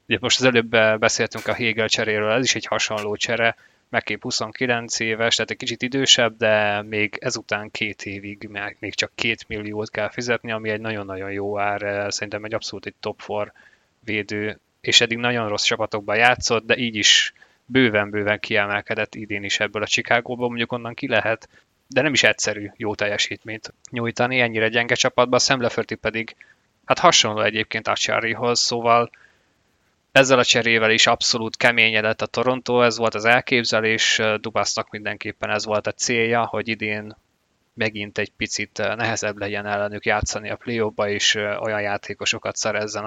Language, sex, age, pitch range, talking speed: Hungarian, male, 20-39, 105-120 Hz, 160 wpm